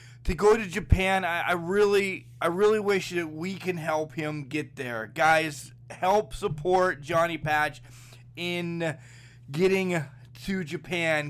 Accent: American